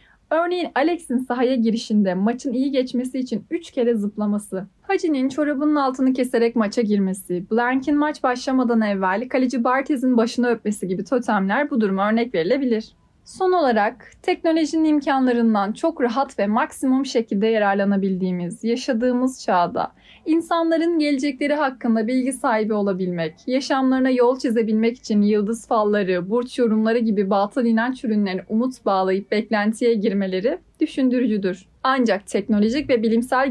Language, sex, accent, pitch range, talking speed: Turkish, female, native, 205-265 Hz, 125 wpm